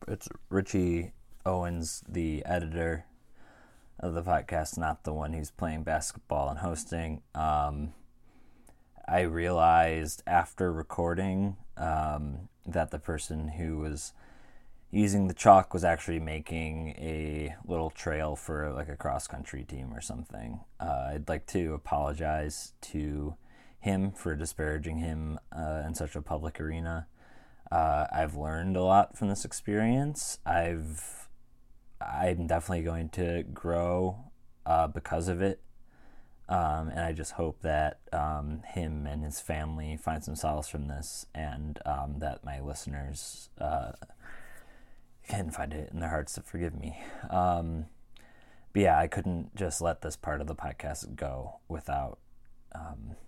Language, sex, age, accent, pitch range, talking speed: English, male, 20-39, American, 75-85 Hz, 140 wpm